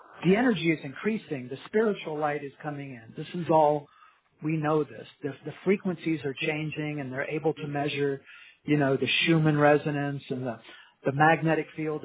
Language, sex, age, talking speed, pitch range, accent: English, male, 50-69, 180 wpm, 140-165 Hz, American